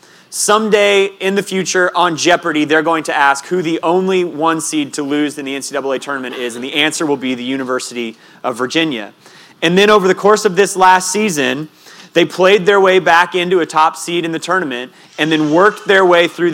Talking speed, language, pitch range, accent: 210 wpm, English, 140-180 Hz, American